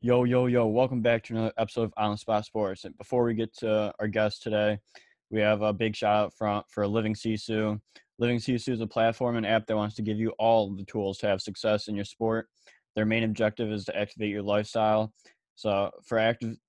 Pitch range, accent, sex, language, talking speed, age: 105-115 Hz, American, male, English, 225 wpm, 20-39